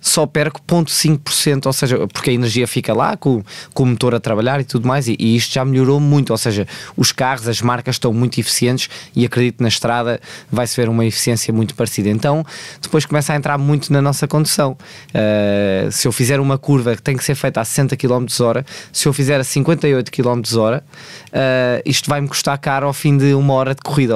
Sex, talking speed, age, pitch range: male, 220 wpm, 20-39, 120-140 Hz